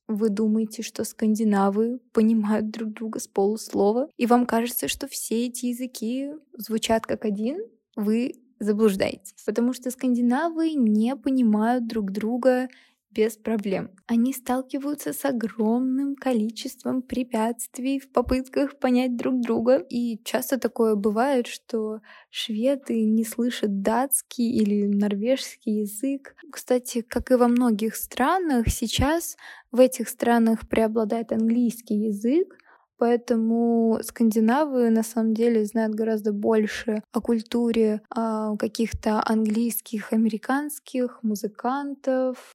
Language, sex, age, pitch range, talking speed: Russian, female, 20-39, 220-255 Hz, 115 wpm